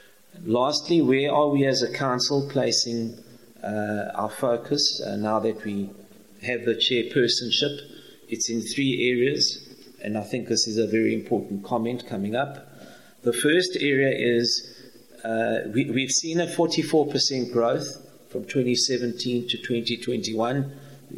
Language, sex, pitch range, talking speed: English, male, 115-135 Hz, 130 wpm